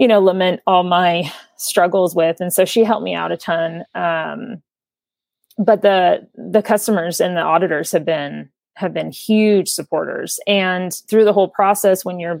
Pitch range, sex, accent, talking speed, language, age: 170-205 Hz, female, American, 175 wpm, English, 30-49